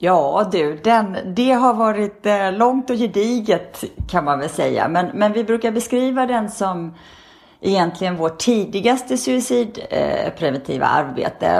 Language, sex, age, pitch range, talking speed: English, female, 30-49, 165-230 Hz, 130 wpm